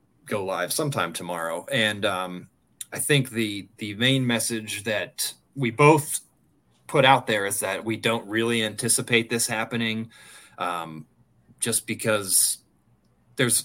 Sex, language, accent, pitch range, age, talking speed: male, English, American, 105-120 Hz, 30-49, 130 wpm